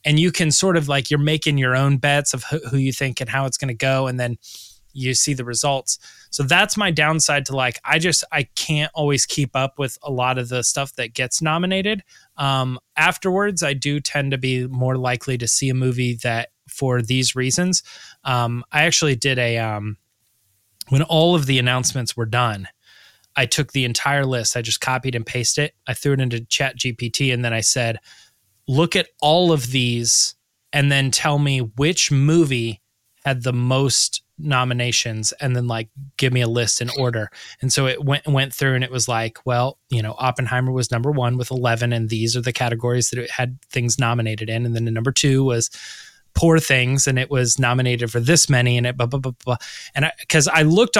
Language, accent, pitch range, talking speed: English, American, 120-145 Hz, 210 wpm